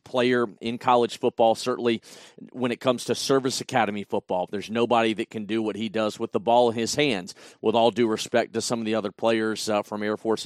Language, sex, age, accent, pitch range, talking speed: English, male, 40-59, American, 110-125 Hz, 230 wpm